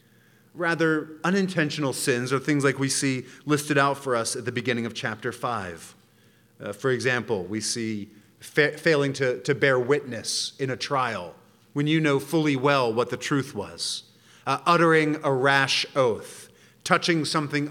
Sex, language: male, English